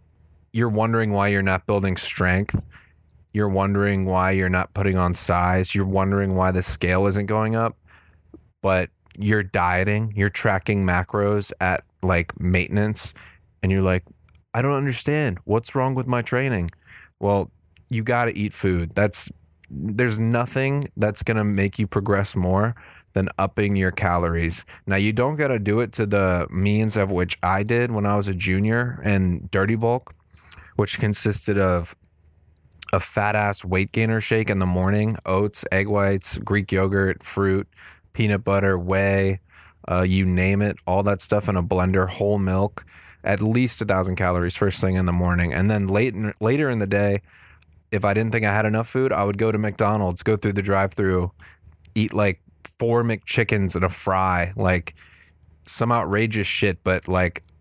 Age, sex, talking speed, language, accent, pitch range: 20-39, male, 170 wpm, English, American, 90-105 Hz